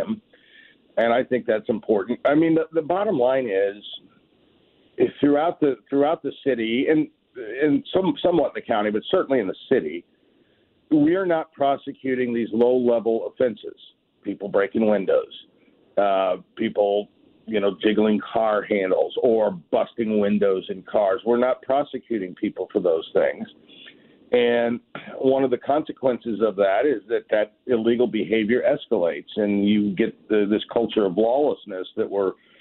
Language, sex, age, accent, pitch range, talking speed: English, male, 50-69, American, 110-150 Hz, 145 wpm